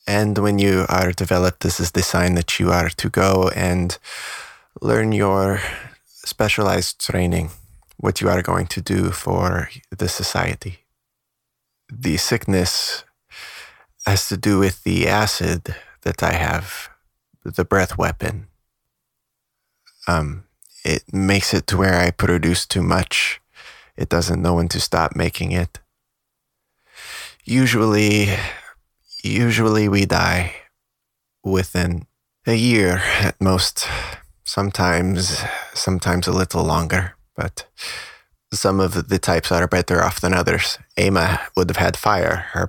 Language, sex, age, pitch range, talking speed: English, male, 20-39, 90-105 Hz, 125 wpm